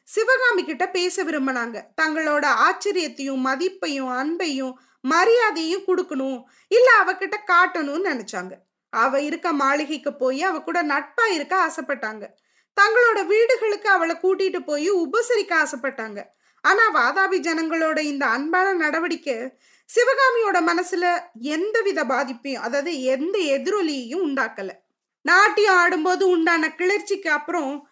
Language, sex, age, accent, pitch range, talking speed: Tamil, female, 20-39, native, 285-375 Hz, 95 wpm